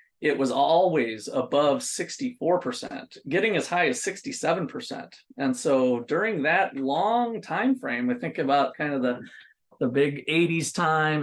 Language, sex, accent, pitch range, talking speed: English, male, American, 130-180 Hz, 155 wpm